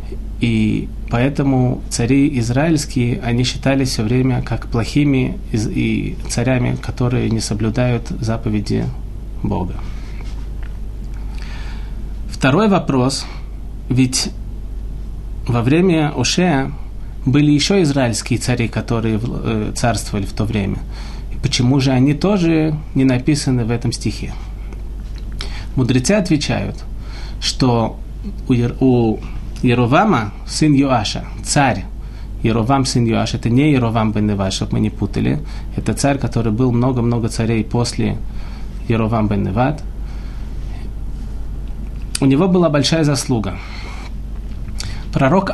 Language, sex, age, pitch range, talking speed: Russian, male, 30-49, 110-135 Hz, 100 wpm